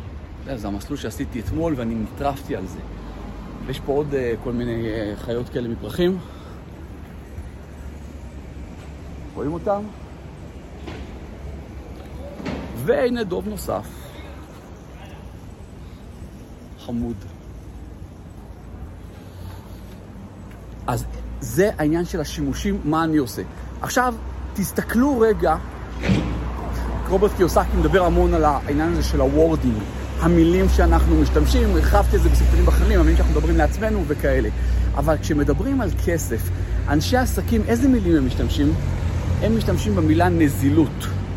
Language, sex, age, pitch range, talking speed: Hebrew, male, 50-69, 80-125 Hz, 105 wpm